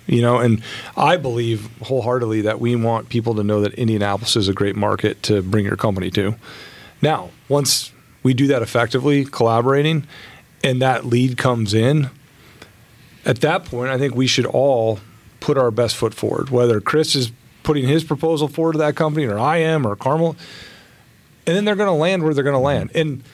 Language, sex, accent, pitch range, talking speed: English, male, American, 115-145 Hz, 195 wpm